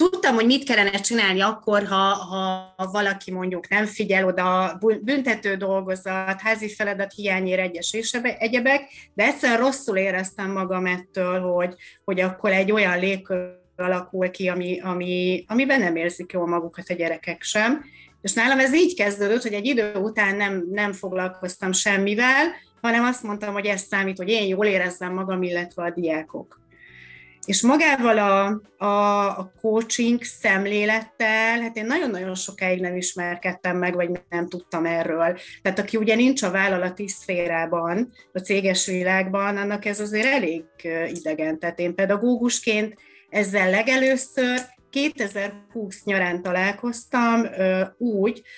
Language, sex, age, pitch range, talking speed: Hungarian, female, 30-49, 180-220 Hz, 140 wpm